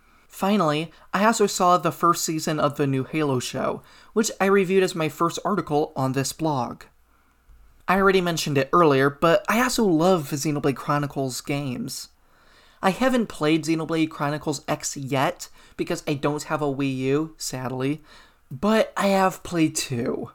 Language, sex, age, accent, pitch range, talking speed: English, male, 20-39, American, 145-185 Hz, 160 wpm